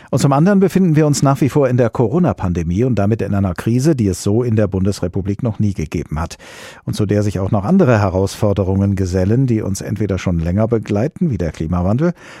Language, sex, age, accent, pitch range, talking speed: German, male, 50-69, German, 95-120 Hz, 220 wpm